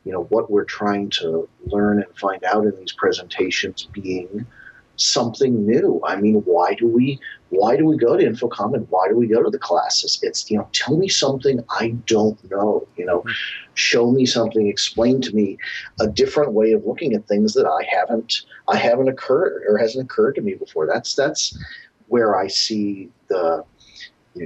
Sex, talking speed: male, 190 wpm